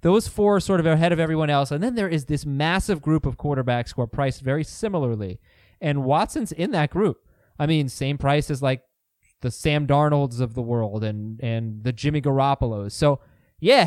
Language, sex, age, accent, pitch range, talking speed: English, male, 20-39, American, 140-190 Hz, 205 wpm